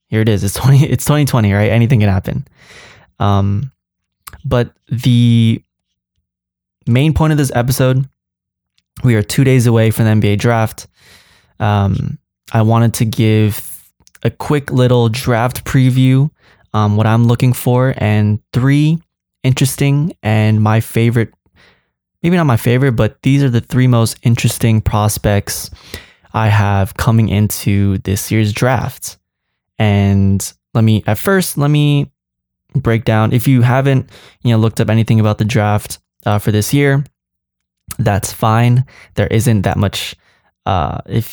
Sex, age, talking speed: male, 20-39, 145 wpm